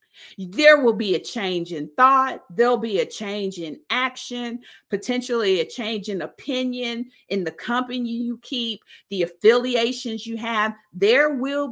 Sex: female